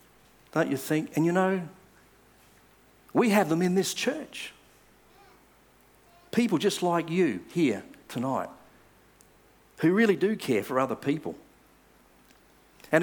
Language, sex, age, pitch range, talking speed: English, male, 50-69, 105-155 Hz, 120 wpm